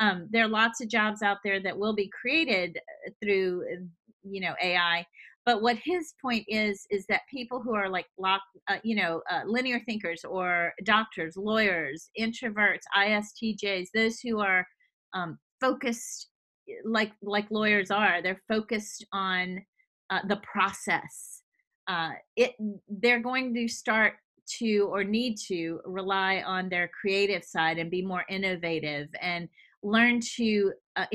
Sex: female